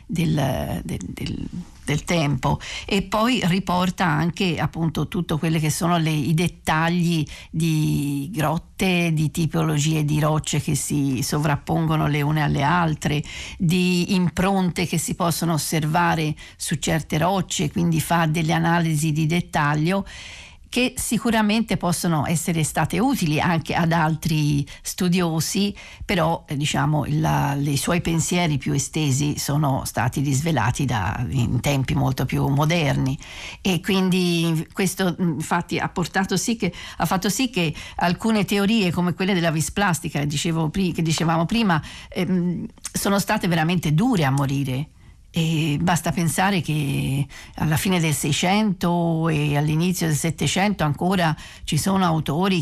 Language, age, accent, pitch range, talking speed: Italian, 50-69, native, 150-175 Hz, 130 wpm